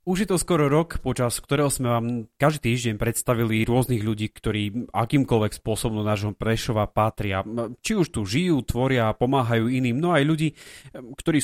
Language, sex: Slovak, male